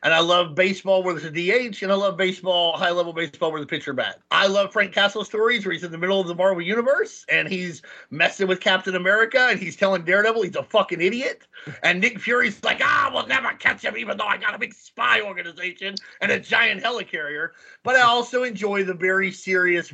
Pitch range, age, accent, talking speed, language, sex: 175-215 Hz, 30-49, American, 225 wpm, English, male